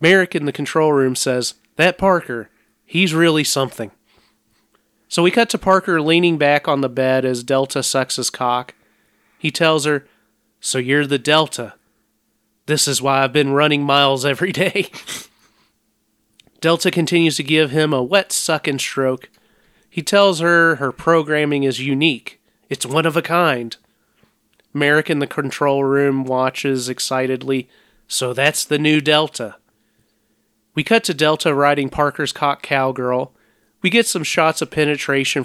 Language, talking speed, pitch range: English, 150 wpm, 125-155 Hz